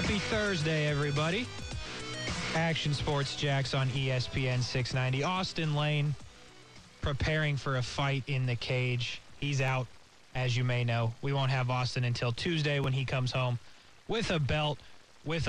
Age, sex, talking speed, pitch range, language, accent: 20-39, male, 145 wpm, 125-160 Hz, English, American